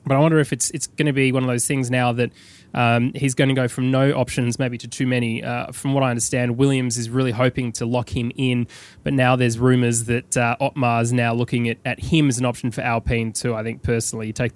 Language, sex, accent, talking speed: English, male, Australian, 260 wpm